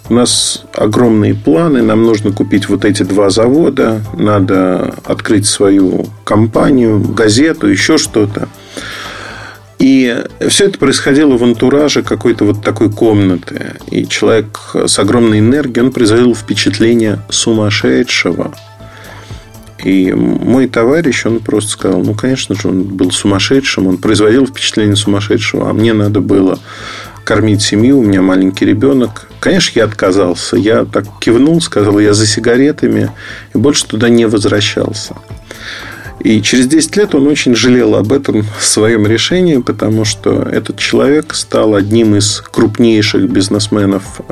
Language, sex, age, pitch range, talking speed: Russian, male, 40-59, 100-120 Hz, 135 wpm